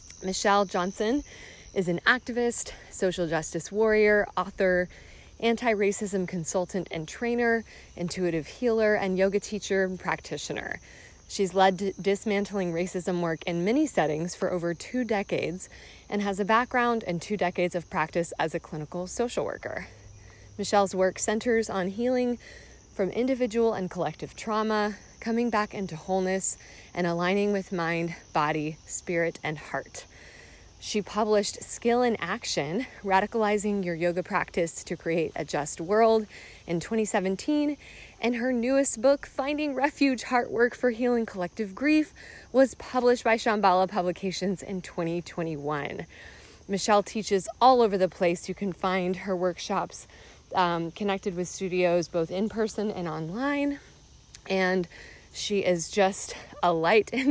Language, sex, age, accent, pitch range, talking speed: English, female, 20-39, American, 175-225 Hz, 135 wpm